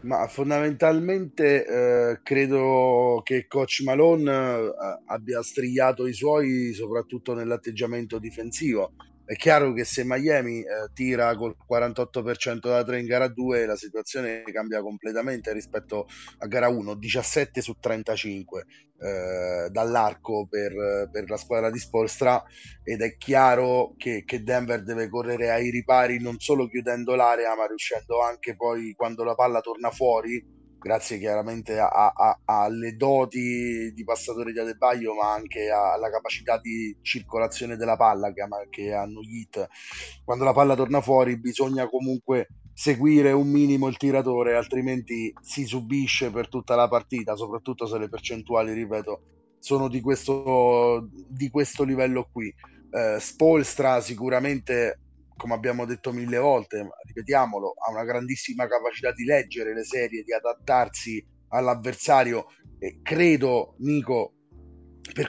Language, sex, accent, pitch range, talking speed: Italian, male, native, 115-130 Hz, 135 wpm